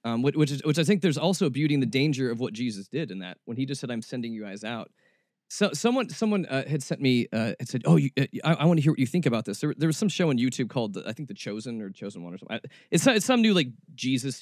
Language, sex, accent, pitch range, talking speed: English, male, American, 145-210 Hz, 320 wpm